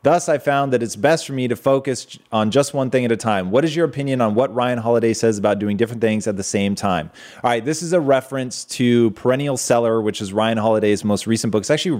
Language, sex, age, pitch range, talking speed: English, male, 30-49, 105-130 Hz, 265 wpm